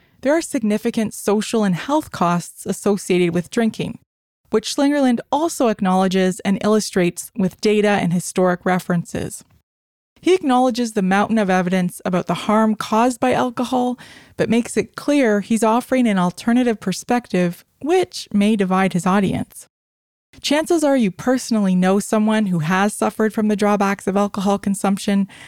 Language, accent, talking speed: English, American, 145 wpm